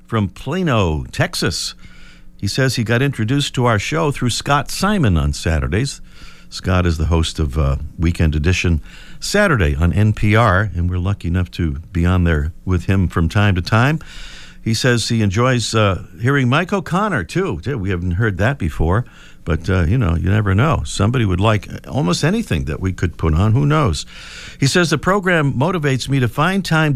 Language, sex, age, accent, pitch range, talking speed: English, male, 50-69, American, 90-145 Hz, 185 wpm